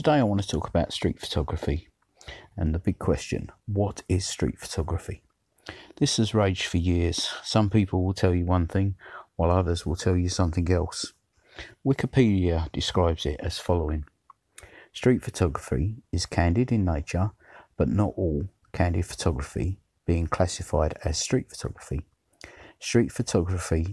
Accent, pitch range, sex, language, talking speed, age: British, 85-105 Hz, male, English, 145 wpm, 50-69